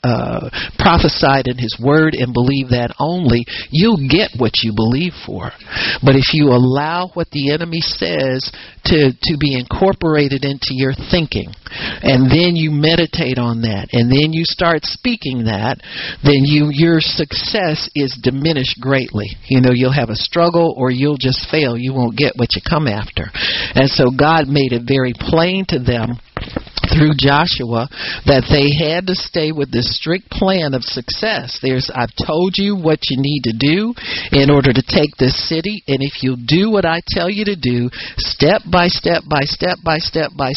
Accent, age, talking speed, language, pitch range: American, 50-69, 180 wpm, English, 130-160 Hz